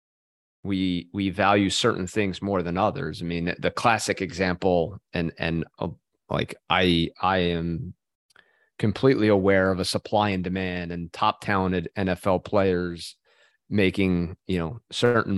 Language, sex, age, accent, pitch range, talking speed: English, male, 30-49, American, 90-105 Hz, 145 wpm